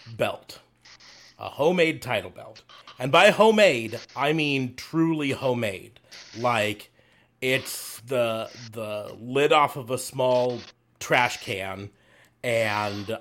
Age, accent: 30-49, American